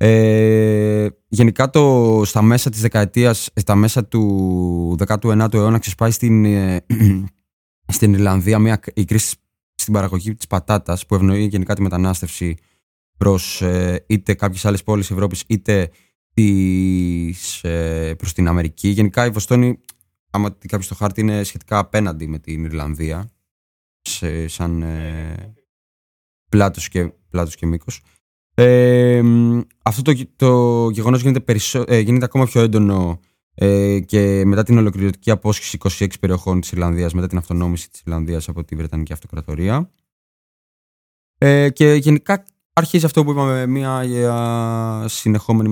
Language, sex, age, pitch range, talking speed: Greek, male, 20-39, 85-110 Hz, 135 wpm